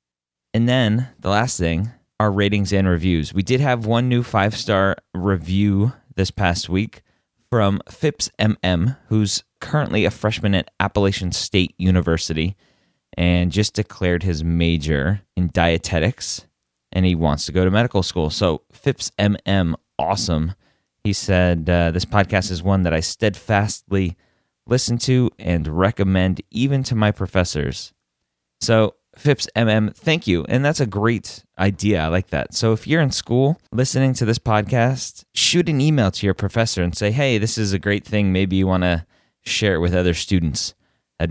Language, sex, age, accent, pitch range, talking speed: English, male, 30-49, American, 90-115 Hz, 165 wpm